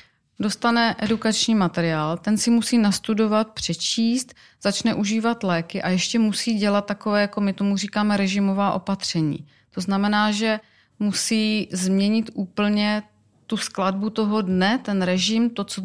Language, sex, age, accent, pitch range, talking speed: Czech, female, 30-49, native, 175-205 Hz, 135 wpm